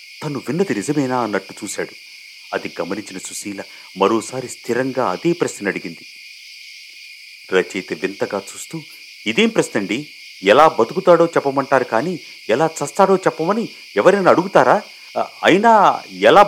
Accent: native